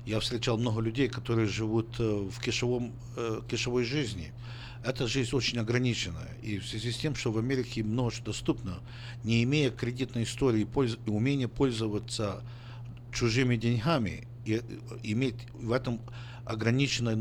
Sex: male